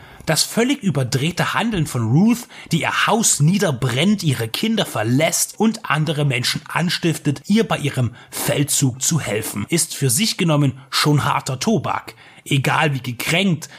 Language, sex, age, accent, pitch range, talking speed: German, male, 30-49, German, 135-200 Hz, 145 wpm